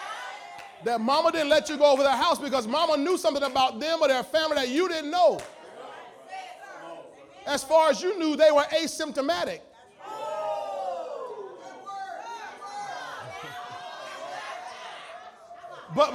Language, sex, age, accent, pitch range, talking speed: English, male, 30-49, American, 220-320 Hz, 115 wpm